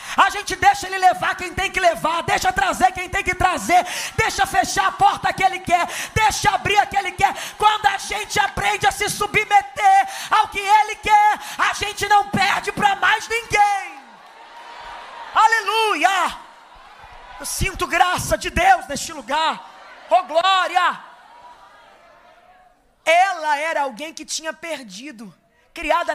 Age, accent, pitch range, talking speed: 20-39, Brazilian, 310-385 Hz, 145 wpm